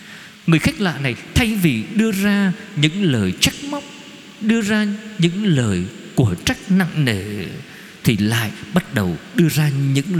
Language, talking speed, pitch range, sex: Vietnamese, 160 wpm, 140-205 Hz, male